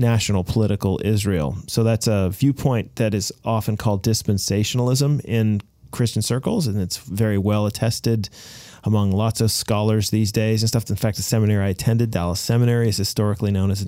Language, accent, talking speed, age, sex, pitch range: English, American, 175 wpm, 30-49, male, 105-125 Hz